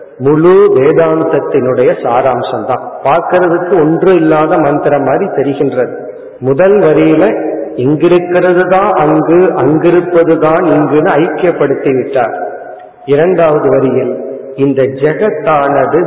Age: 50-69